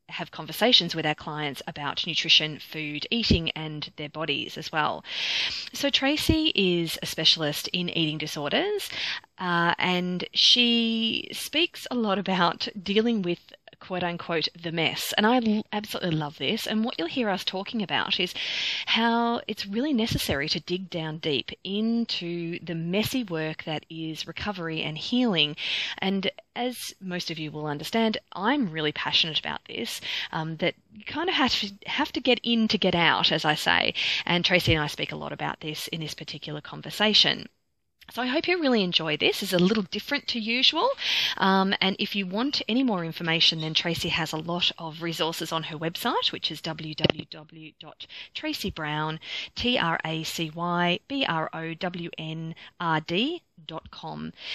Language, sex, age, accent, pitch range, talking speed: English, female, 30-49, Australian, 160-220 Hz, 155 wpm